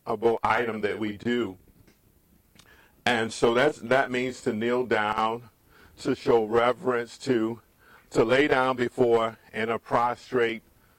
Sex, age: male, 50-69